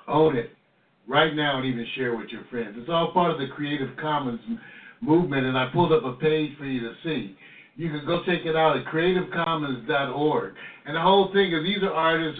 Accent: American